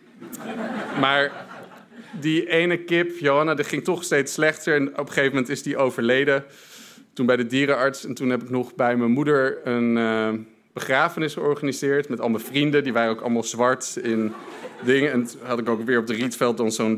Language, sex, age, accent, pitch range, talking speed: Dutch, male, 50-69, Dutch, 120-160 Hz, 195 wpm